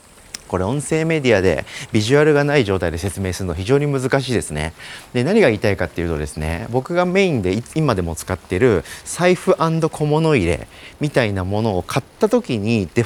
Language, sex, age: Japanese, male, 40-59